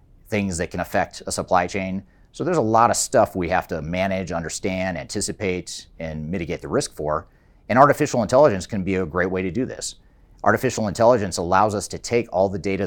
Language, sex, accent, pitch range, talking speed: English, male, American, 80-100 Hz, 205 wpm